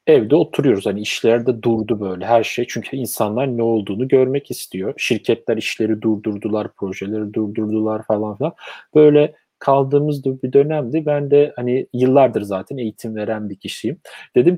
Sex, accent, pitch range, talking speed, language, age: male, native, 110-140 Hz, 150 wpm, Turkish, 40-59